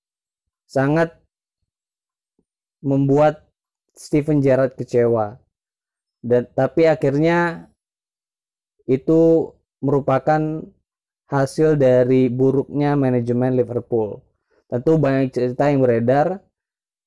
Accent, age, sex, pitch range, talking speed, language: native, 20-39, male, 125-140 Hz, 70 wpm, Indonesian